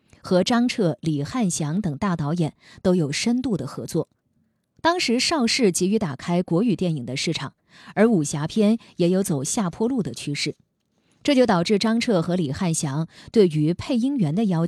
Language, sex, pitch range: Chinese, female, 160-230 Hz